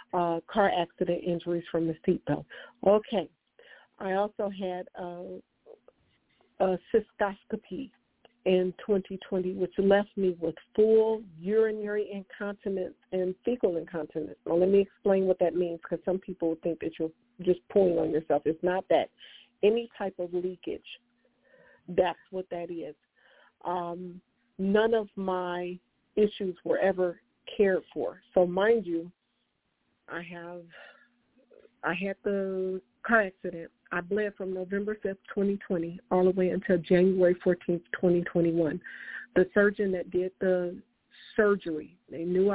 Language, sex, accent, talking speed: English, female, American, 135 wpm